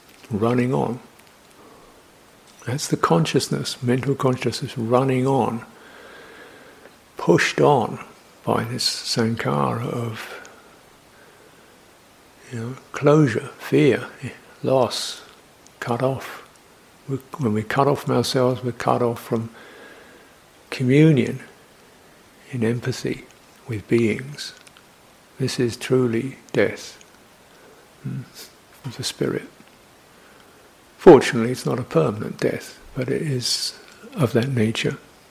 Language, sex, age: English, male, 60-79